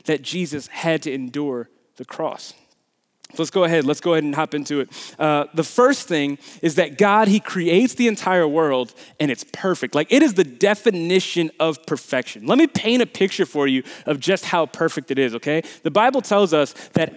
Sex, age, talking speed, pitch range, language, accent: male, 30-49, 205 wpm, 160-235 Hz, English, American